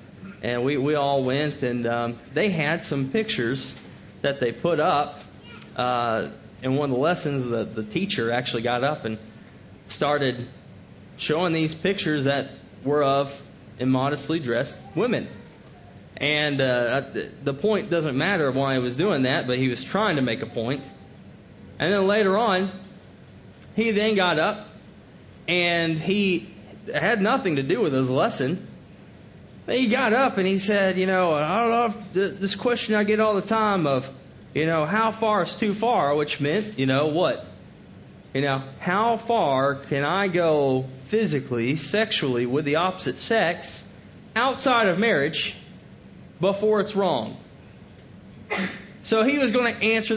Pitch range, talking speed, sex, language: 135-200 Hz, 155 wpm, male, English